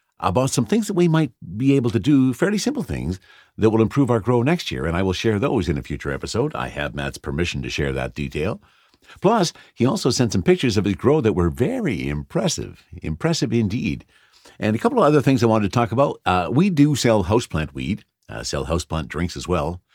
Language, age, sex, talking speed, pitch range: English, 50-69, male, 225 wpm, 85-125 Hz